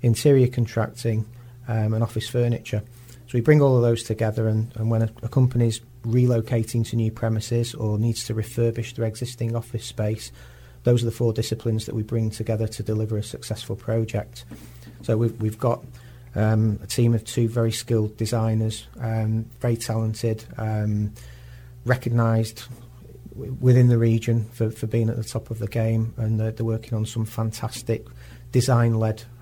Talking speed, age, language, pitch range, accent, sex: 165 wpm, 40-59, English, 110-120 Hz, British, male